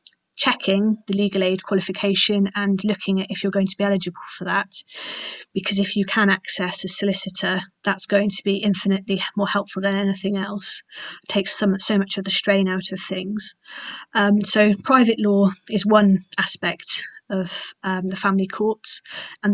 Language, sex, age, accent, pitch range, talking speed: English, female, 30-49, British, 190-205 Hz, 170 wpm